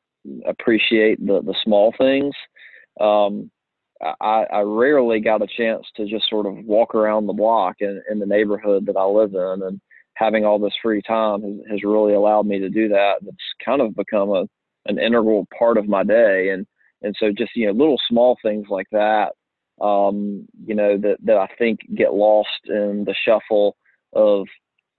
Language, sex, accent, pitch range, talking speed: English, male, American, 105-115 Hz, 180 wpm